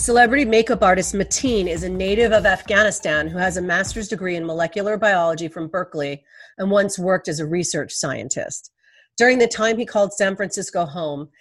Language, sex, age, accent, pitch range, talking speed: English, female, 40-59, American, 165-215 Hz, 180 wpm